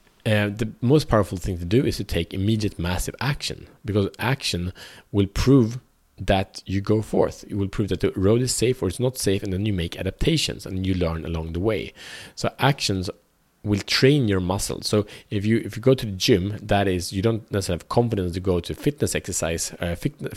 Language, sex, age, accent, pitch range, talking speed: Swedish, male, 30-49, Norwegian, 90-110 Hz, 215 wpm